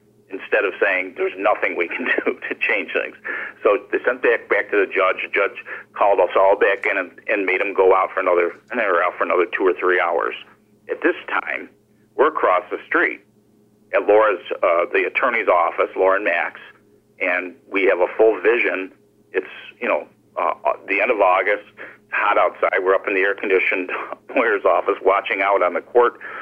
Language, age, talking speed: English, 50-69, 200 wpm